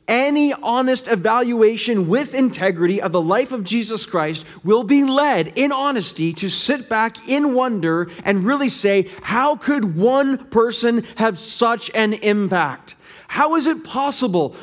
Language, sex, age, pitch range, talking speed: English, male, 30-49, 190-250 Hz, 150 wpm